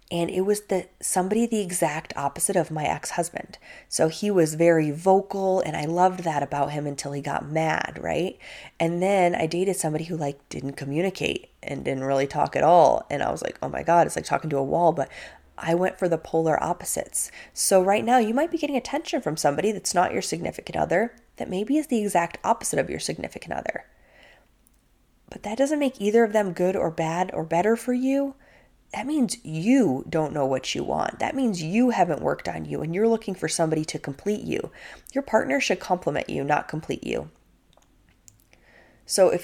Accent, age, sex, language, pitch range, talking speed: American, 20-39, female, English, 155-210 Hz, 205 wpm